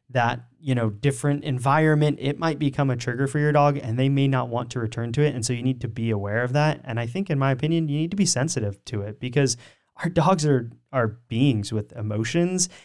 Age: 20-39